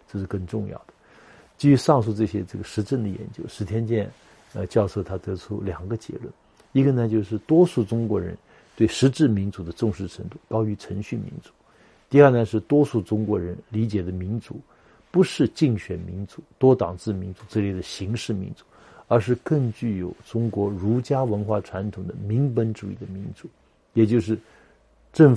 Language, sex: Chinese, male